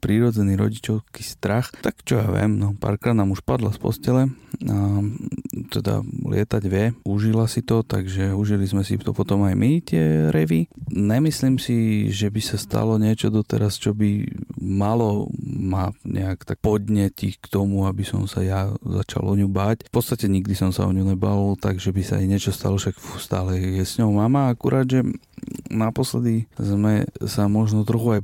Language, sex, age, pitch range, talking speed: Slovak, male, 30-49, 100-115 Hz, 180 wpm